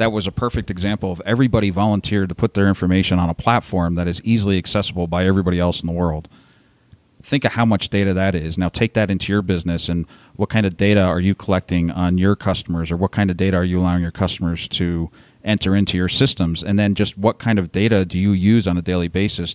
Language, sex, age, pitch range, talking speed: English, male, 40-59, 90-105 Hz, 240 wpm